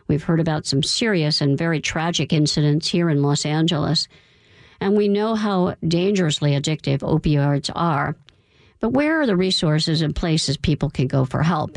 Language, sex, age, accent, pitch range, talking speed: English, female, 50-69, American, 145-185 Hz, 170 wpm